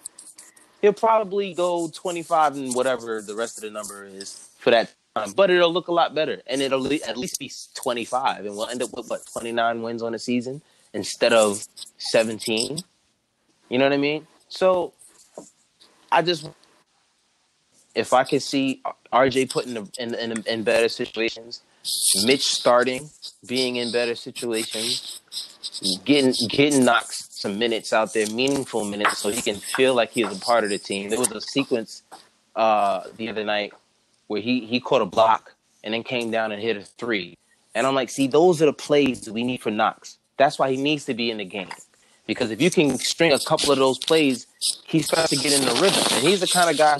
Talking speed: 200 wpm